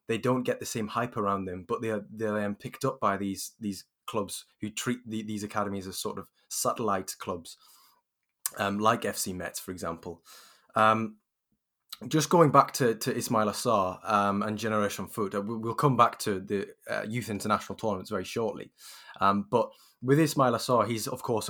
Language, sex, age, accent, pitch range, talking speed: English, male, 20-39, British, 100-115 Hz, 185 wpm